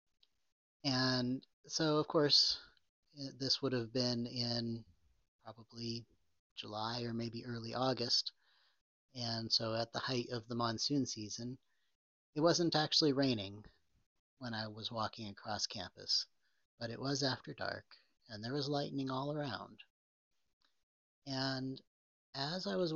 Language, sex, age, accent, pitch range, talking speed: English, male, 40-59, American, 115-145 Hz, 130 wpm